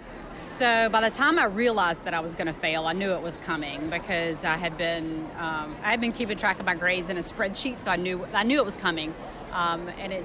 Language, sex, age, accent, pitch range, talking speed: English, female, 30-49, American, 170-215 Hz, 250 wpm